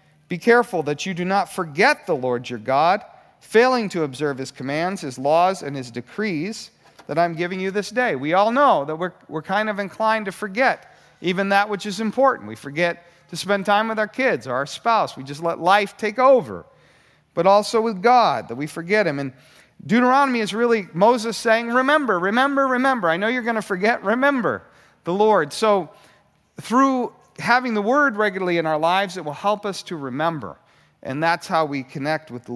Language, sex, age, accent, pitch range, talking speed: English, male, 40-59, American, 165-230 Hz, 200 wpm